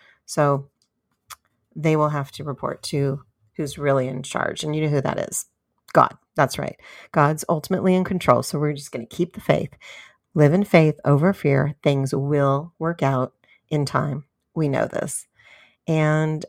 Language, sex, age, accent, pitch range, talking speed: English, female, 40-59, American, 135-155 Hz, 170 wpm